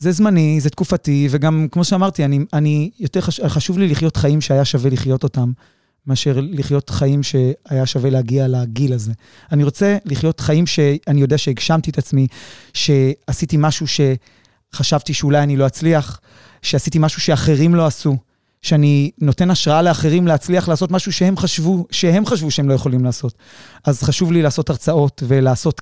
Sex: male